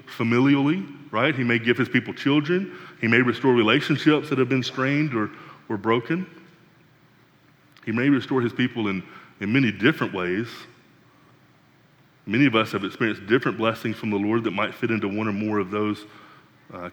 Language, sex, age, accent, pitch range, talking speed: English, male, 30-49, American, 105-140 Hz, 175 wpm